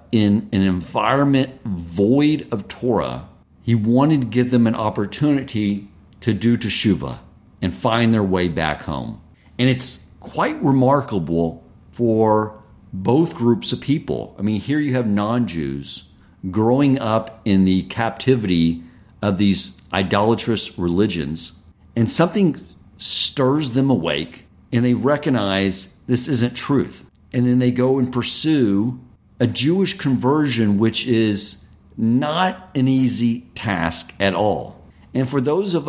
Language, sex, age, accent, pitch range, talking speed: English, male, 50-69, American, 95-125 Hz, 130 wpm